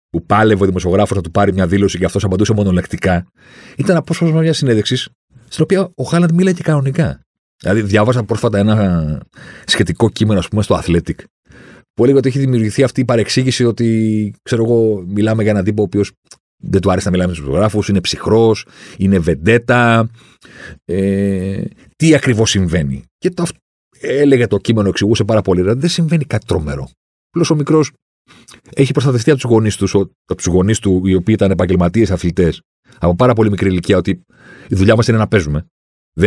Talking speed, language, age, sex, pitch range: 170 wpm, Greek, 40-59, male, 90-125 Hz